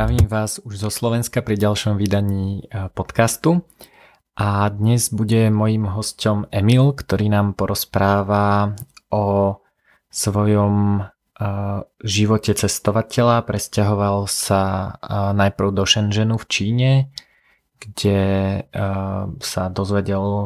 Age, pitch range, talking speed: 20-39, 100-110 Hz, 95 wpm